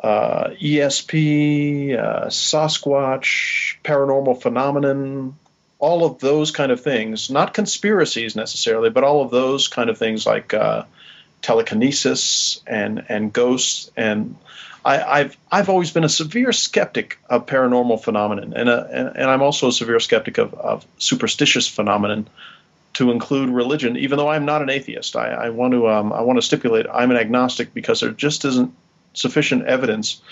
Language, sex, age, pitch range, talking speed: English, male, 40-59, 120-150 Hz, 155 wpm